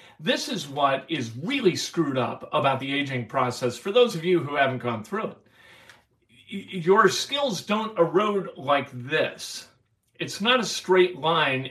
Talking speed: 160 wpm